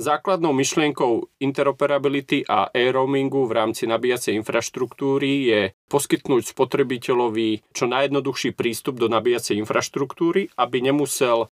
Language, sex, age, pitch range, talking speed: Slovak, male, 30-49, 110-140 Hz, 105 wpm